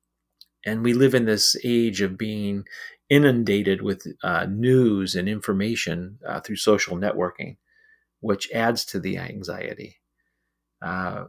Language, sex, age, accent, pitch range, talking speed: English, male, 40-59, American, 100-130 Hz, 130 wpm